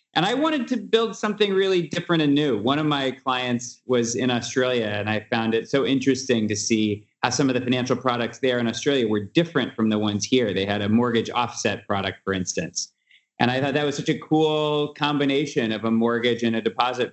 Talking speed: 220 wpm